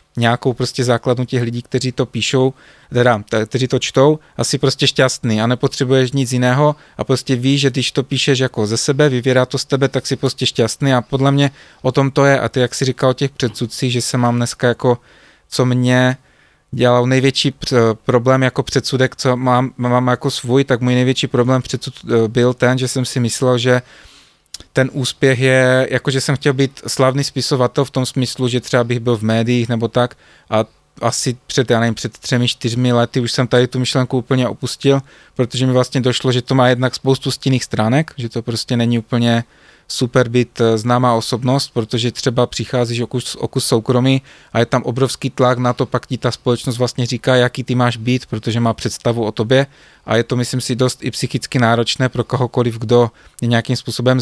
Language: Czech